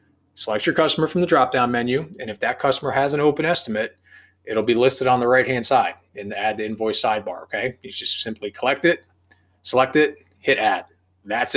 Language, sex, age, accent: English, male, 30-49, American